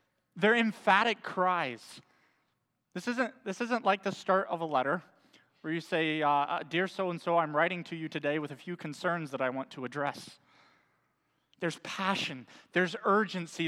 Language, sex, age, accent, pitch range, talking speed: English, male, 30-49, American, 150-190 Hz, 160 wpm